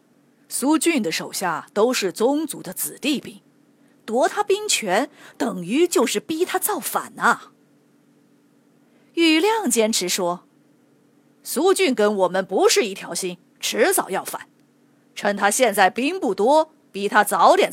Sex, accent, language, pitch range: female, native, Chinese, 210-305 Hz